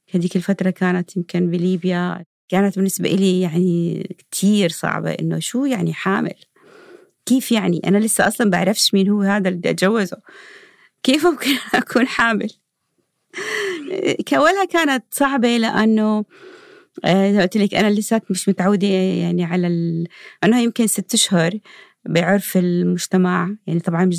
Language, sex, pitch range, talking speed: Arabic, female, 185-240 Hz, 130 wpm